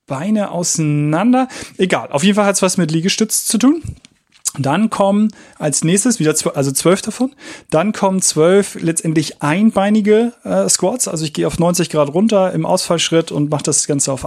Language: German